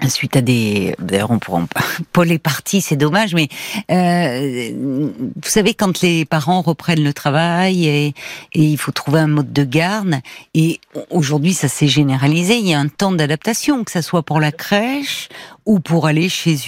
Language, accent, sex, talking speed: French, French, female, 190 wpm